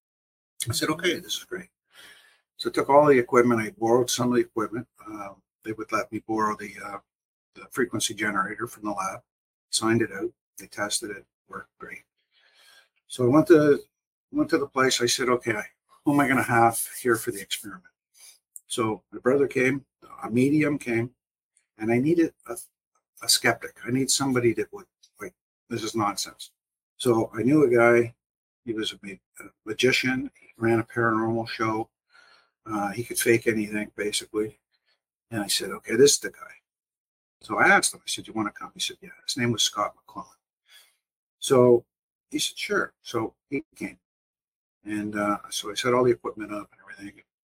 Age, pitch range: 60-79, 105-130 Hz